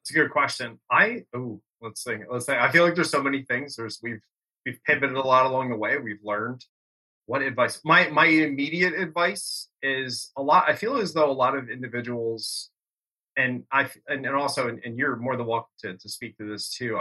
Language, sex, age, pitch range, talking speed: English, male, 20-39, 110-140 Hz, 220 wpm